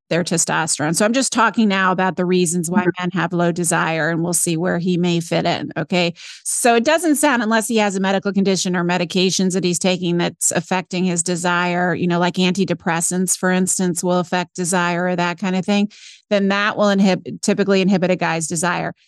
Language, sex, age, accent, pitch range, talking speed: English, female, 30-49, American, 175-205 Hz, 210 wpm